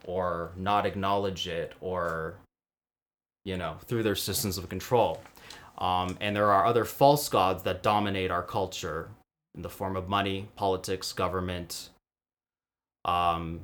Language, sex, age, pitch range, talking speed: English, male, 20-39, 90-110 Hz, 135 wpm